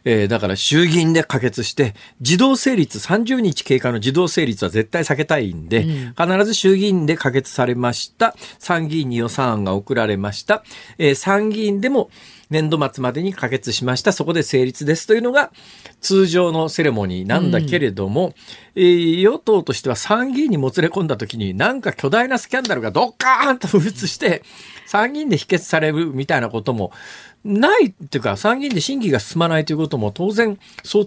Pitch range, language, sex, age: 135-210 Hz, Japanese, male, 50-69